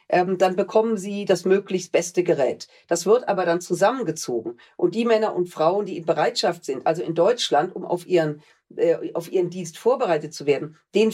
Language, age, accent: German, 40-59, German